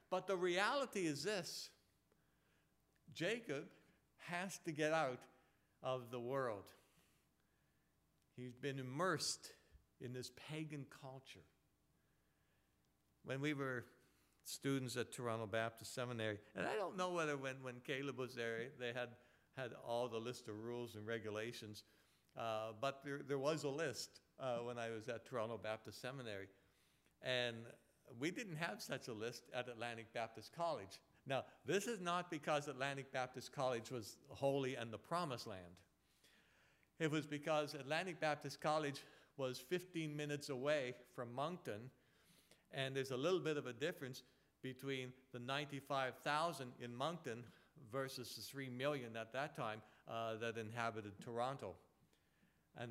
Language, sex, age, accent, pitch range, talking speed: English, male, 60-79, American, 120-150 Hz, 140 wpm